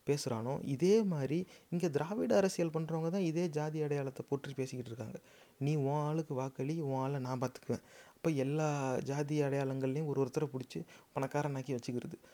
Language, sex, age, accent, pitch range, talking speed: English, male, 30-49, Indian, 135-160 Hz, 155 wpm